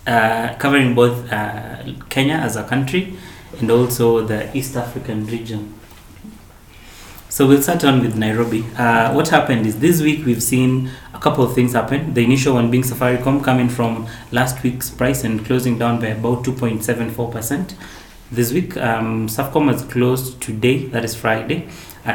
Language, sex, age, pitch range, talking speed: English, male, 30-49, 115-130 Hz, 165 wpm